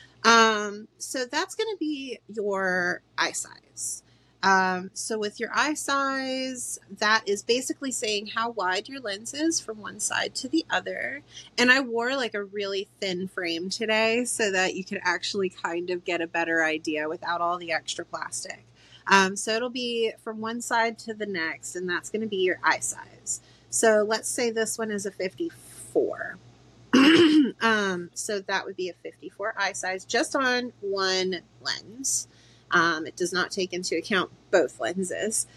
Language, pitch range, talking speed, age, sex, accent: English, 190-250 Hz, 175 wpm, 30-49, female, American